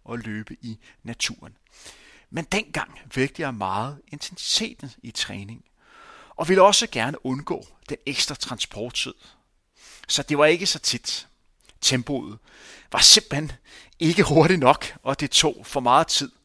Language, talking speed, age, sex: Danish, 140 wpm, 30-49, male